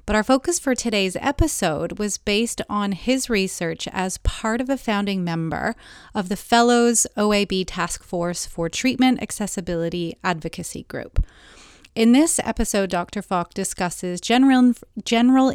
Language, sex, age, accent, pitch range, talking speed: English, female, 30-49, American, 175-230 Hz, 140 wpm